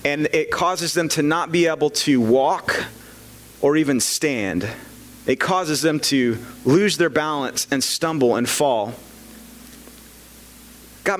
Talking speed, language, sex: 135 wpm, English, male